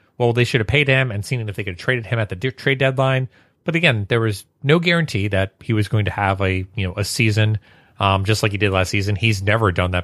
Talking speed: 275 wpm